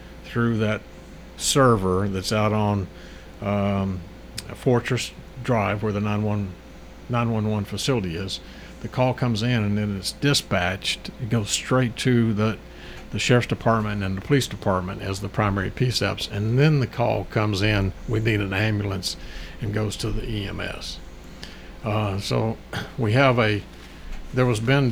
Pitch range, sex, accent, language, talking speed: 100-125 Hz, male, American, English, 150 wpm